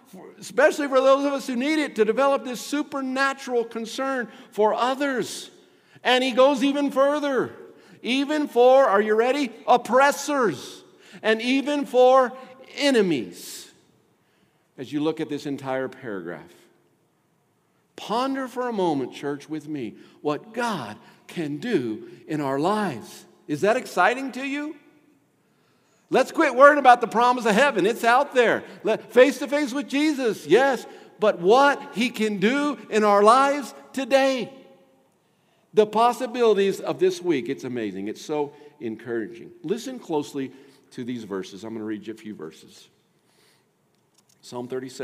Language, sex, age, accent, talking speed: English, male, 50-69, American, 145 wpm